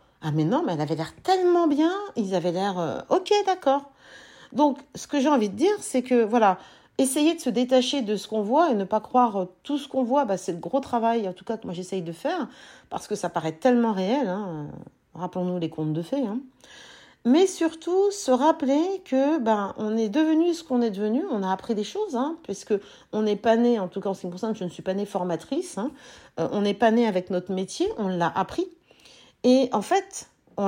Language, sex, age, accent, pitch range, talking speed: French, female, 40-59, French, 190-285 Hz, 235 wpm